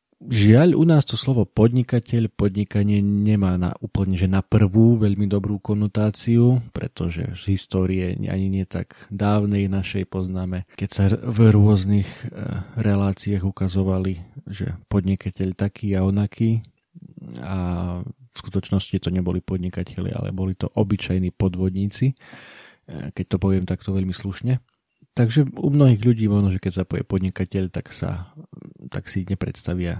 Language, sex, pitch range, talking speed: Slovak, male, 95-110 Hz, 135 wpm